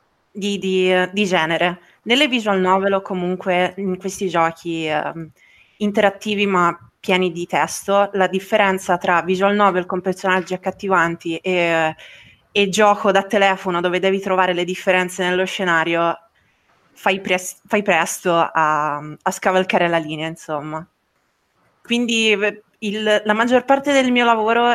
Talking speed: 130 wpm